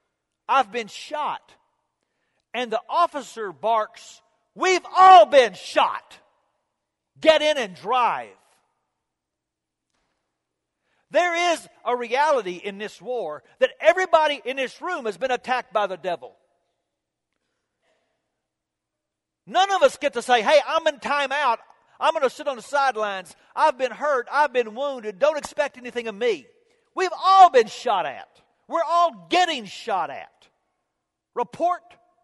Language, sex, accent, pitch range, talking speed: English, male, American, 180-285 Hz, 135 wpm